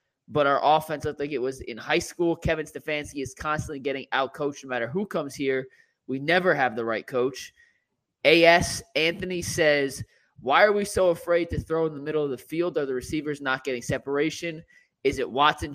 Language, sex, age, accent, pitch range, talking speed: English, male, 20-39, American, 135-170 Hz, 200 wpm